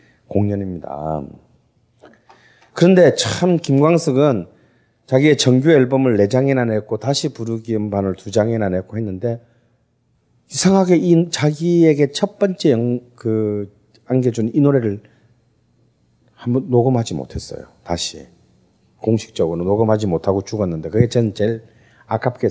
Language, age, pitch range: Korean, 40-59, 110-170 Hz